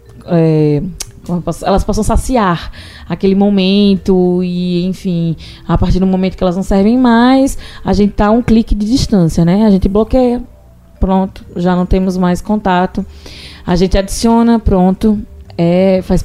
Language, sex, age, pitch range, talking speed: Portuguese, female, 20-39, 180-215 Hz, 150 wpm